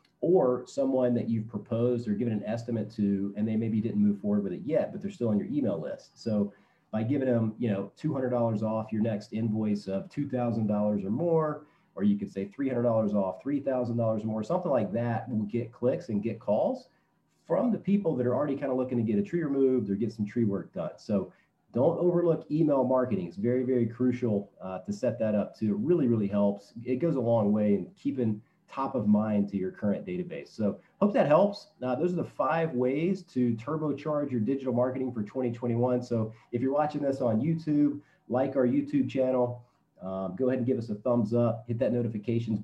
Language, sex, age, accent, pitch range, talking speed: English, male, 40-59, American, 110-135 Hz, 215 wpm